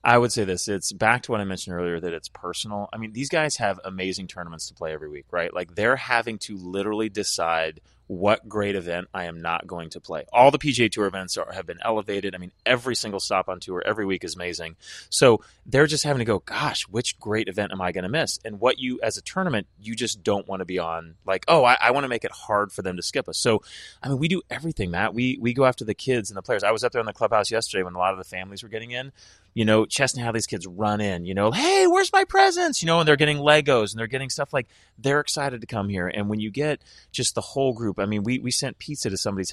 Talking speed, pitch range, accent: 275 wpm, 95-130 Hz, American